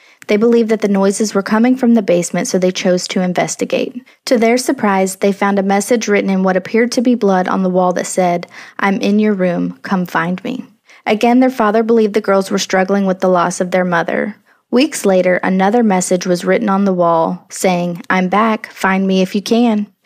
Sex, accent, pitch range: female, American, 185-225 Hz